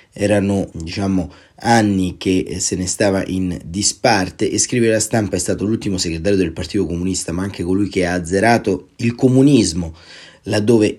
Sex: male